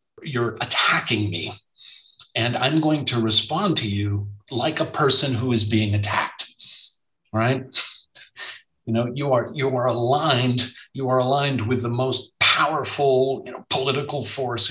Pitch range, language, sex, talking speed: 110-130 Hz, English, male, 145 wpm